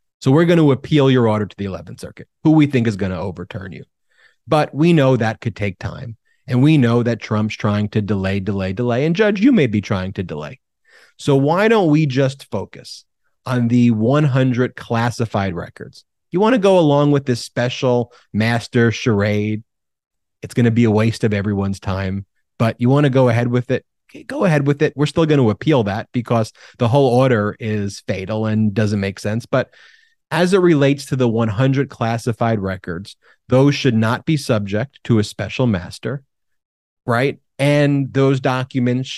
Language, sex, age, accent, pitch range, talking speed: English, male, 30-49, American, 105-135 Hz, 190 wpm